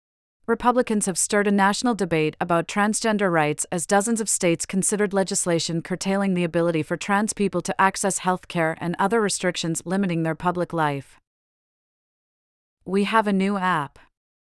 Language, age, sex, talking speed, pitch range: English, 40-59, female, 155 wpm, 165-200 Hz